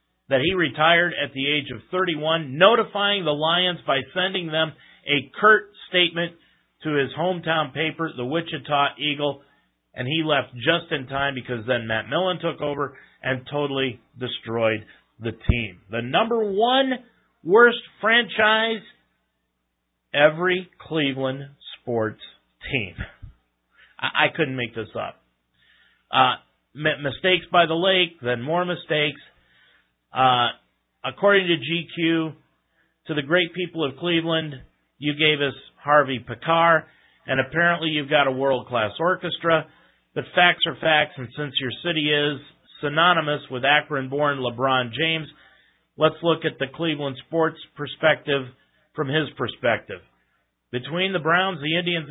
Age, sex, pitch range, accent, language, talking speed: 40-59, male, 130-170 Hz, American, English, 130 wpm